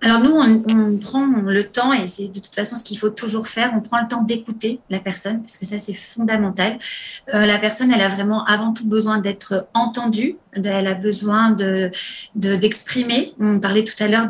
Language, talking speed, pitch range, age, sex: French, 215 wpm, 210-250 Hz, 30-49, female